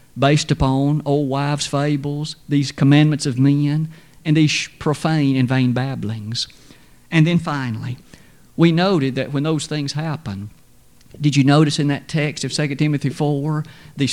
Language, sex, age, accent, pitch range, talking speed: English, male, 50-69, American, 140-175 Hz, 155 wpm